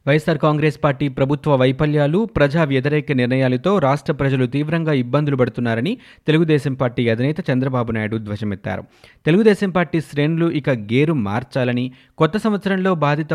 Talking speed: 125 wpm